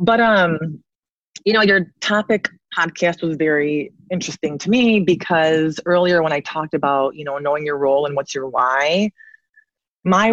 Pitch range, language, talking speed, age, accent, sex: 155-195 Hz, English, 165 wpm, 30-49, American, female